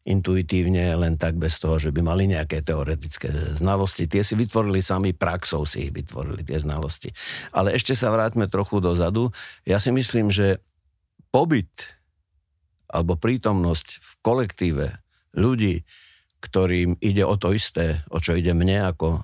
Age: 60-79